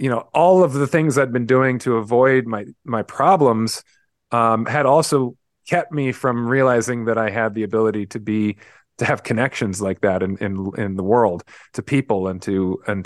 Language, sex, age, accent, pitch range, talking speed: English, male, 30-49, American, 110-135 Hz, 200 wpm